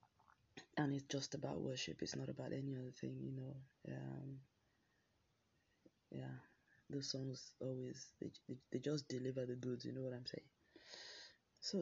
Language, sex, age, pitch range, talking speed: English, female, 20-39, 130-150 Hz, 150 wpm